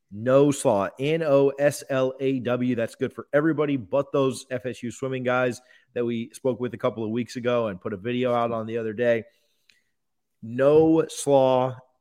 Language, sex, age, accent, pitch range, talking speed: English, male, 30-49, American, 115-145 Hz, 160 wpm